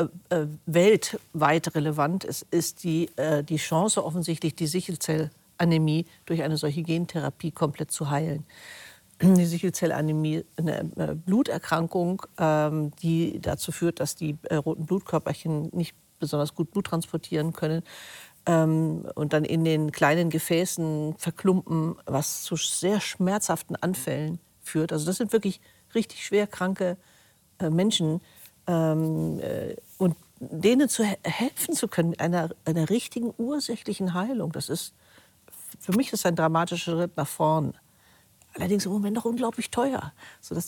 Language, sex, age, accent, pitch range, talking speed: German, female, 50-69, German, 160-185 Hz, 125 wpm